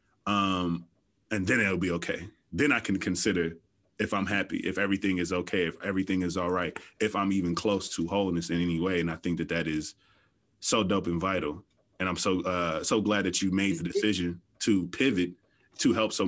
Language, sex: English, male